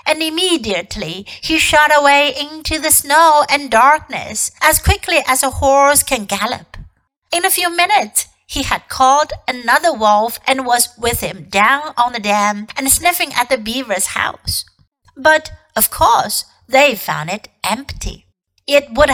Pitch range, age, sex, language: 215-300 Hz, 60-79, female, Chinese